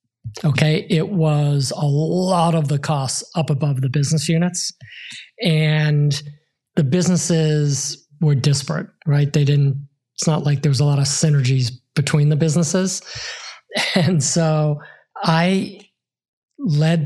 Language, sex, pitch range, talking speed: English, male, 145-165 Hz, 130 wpm